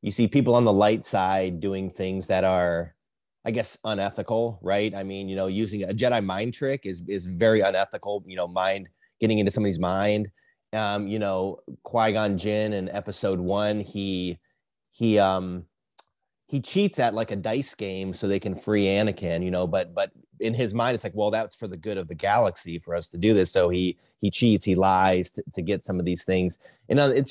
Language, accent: English, American